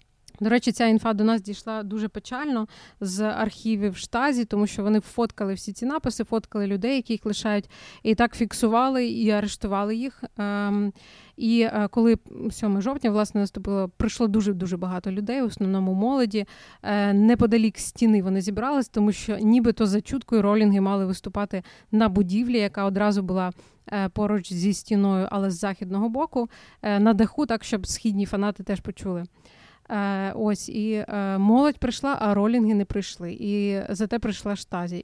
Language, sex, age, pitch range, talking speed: Ukrainian, female, 20-39, 200-230 Hz, 150 wpm